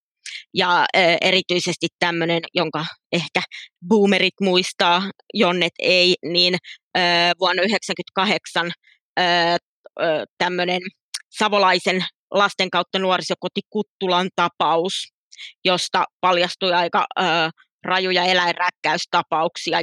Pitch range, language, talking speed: 170-185 Hz, Finnish, 75 wpm